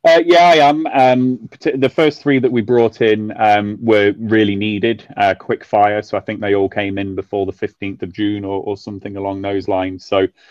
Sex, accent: male, British